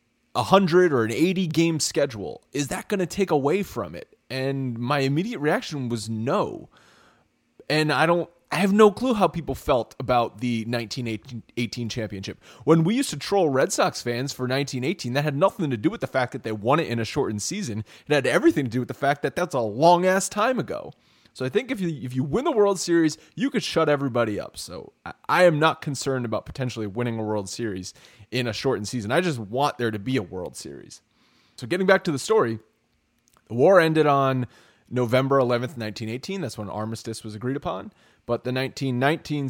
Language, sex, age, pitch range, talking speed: English, male, 30-49, 115-145 Hz, 210 wpm